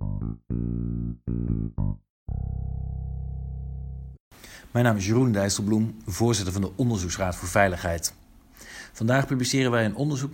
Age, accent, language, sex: 50-69, Dutch, Dutch, male